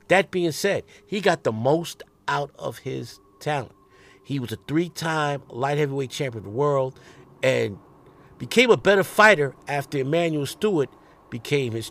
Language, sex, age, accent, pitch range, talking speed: English, male, 50-69, American, 145-180 Hz, 155 wpm